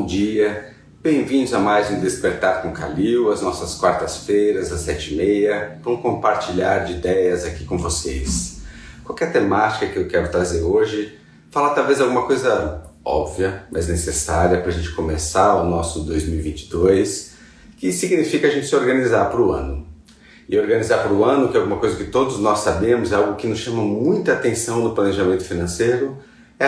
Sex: male